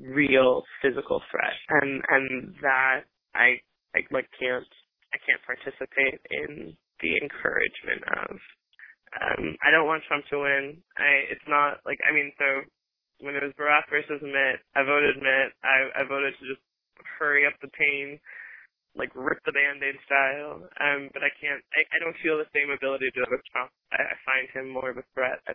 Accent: American